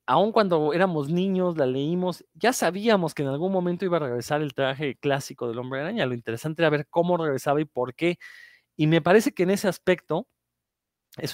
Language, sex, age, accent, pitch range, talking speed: Spanish, male, 30-49, Mexican, 120-165 Hz, 200 wpm